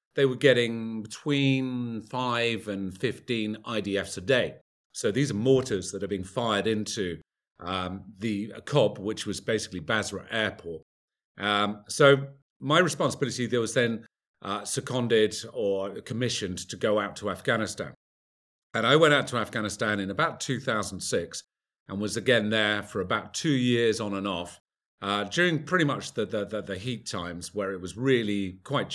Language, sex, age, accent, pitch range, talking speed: English, male, 40-59, British, 100-130 Hz, 160 wpm